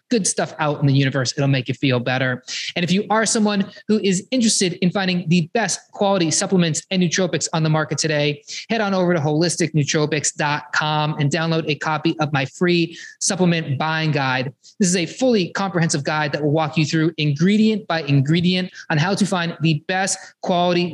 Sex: male